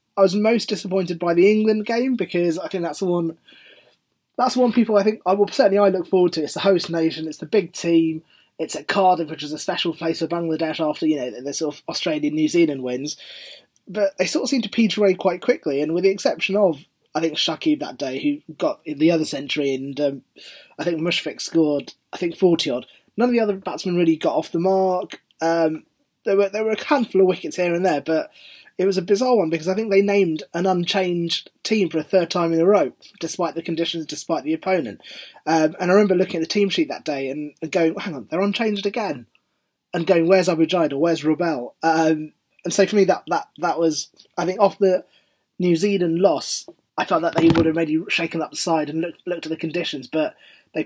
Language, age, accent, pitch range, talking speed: English, 20-39, British, 160-200 Hz, 235 wpm